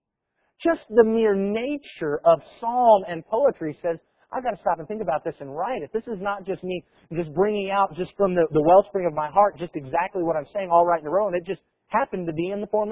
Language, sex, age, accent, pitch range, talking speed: English, male, 40-59, American, 160-215 Hz, 255 wpm